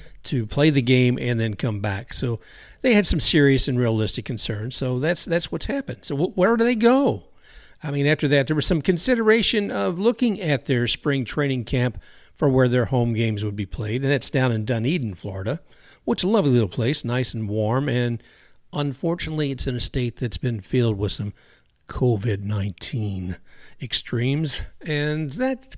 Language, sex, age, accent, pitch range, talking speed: English, male, 50-69, American, 115-175 Hz, 185 wpm